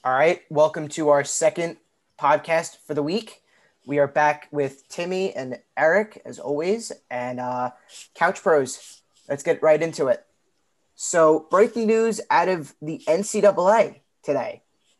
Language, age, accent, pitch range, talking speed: English, 20-39, American, 145-185 Hz, 145 wpm